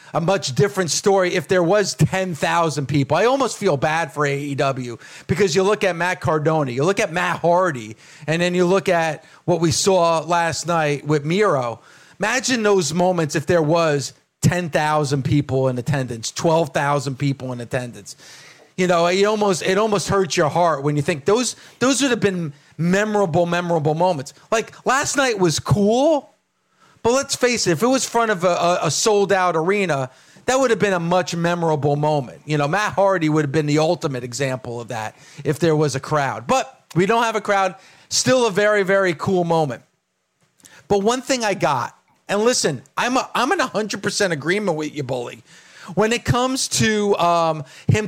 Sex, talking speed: male, 190 wpm